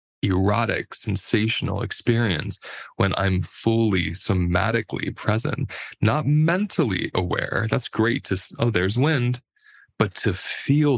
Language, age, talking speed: English, 20-39, 110 wpm